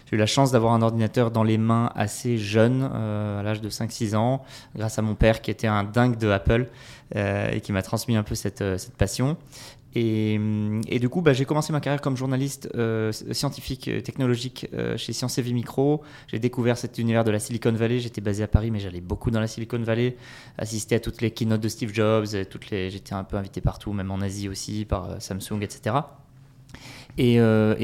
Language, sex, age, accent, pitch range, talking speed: French, male, 20-39, French, 110-135 Hz, 220 wpm